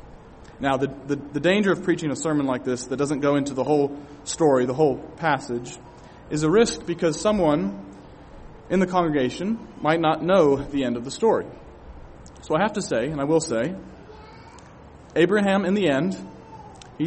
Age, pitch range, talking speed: 30-49, 125-155 Hz, 180 wpm